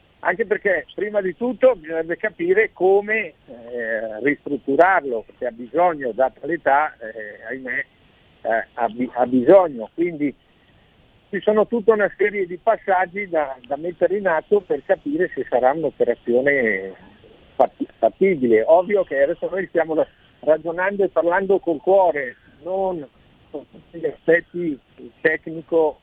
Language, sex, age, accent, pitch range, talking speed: Italian, male, 50-69, native, 145-210 Hz, 125 wpm